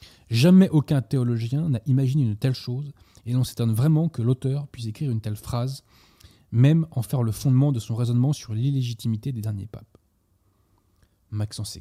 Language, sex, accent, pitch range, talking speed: French, male, French, 105-140 Hz, 180 wpm